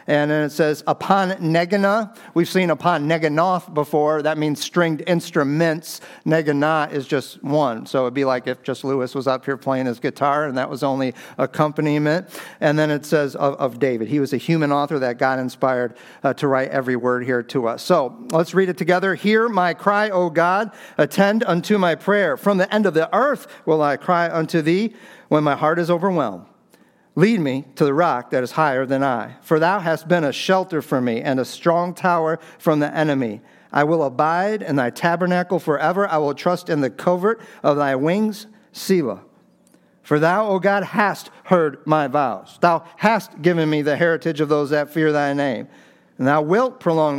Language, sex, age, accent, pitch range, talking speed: English, male, 50-69, American, 145-180 Hz, 200 wpm